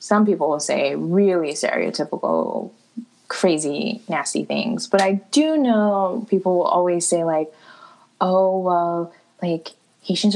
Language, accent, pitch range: English, American, 165-215 Hz